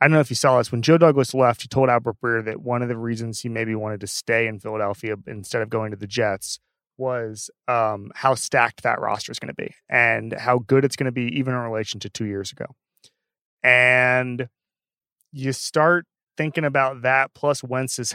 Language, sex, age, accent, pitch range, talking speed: English, male, 30-49, American, 115-140 Hz, 215 wpm